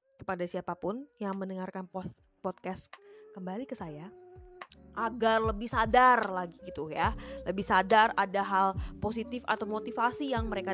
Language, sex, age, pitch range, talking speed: Indonesian, female, 20-39, 185-260 Hz, 130 wpm